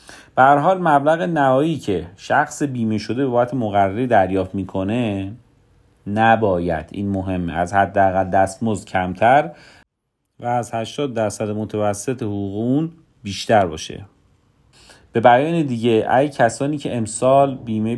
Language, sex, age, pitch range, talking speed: Persian, male, 40-59, 100-130 Hz, 125 wpm